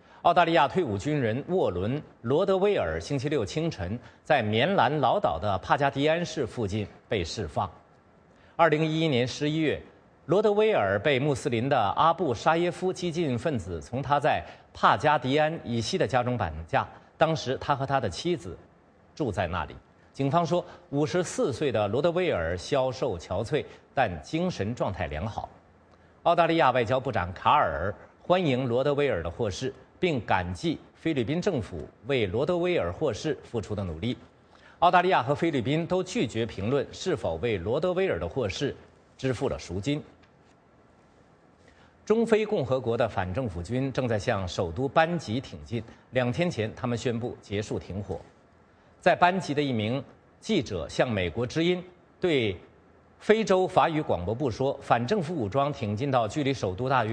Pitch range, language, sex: 115-165 Hz, English, male